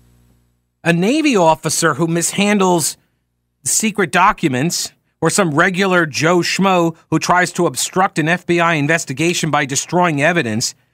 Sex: male